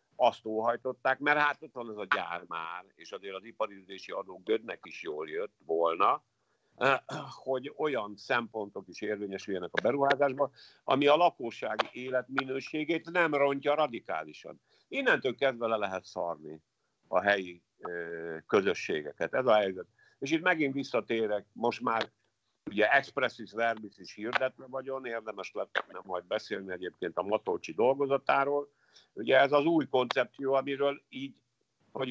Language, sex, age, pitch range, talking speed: Hungarian, male, 50-69, 110-145 Hz, 140 wpm